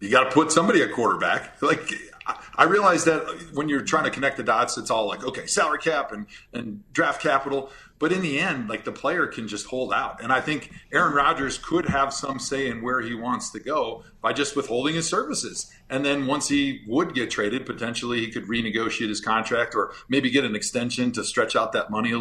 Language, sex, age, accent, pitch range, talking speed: English, male, 40-59, American, 115-145 Hz, 225 wpm